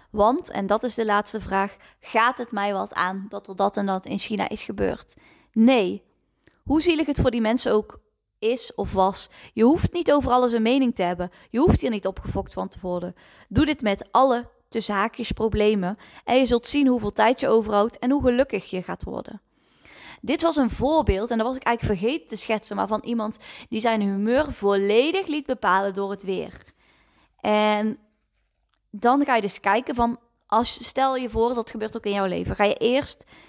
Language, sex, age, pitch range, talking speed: Dutch, female, 20-39, 195-250 Hz, 205 wpm